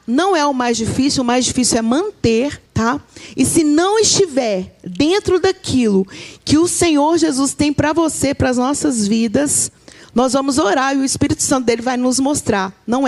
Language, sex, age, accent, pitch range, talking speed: Portuguese, female, 40-59, Brazilian, 230-295 Hz, 185 wpm